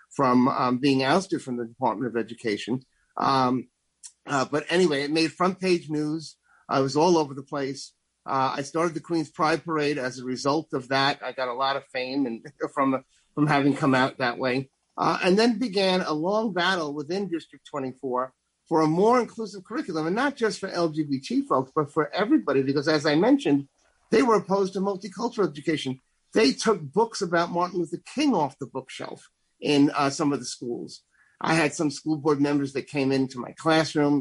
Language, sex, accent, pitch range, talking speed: English, male, American, 135-165 Hz, 195 wpm